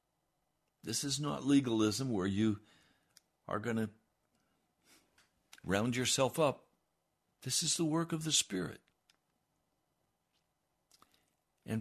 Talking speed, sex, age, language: 100 wpm, male, 60-79, English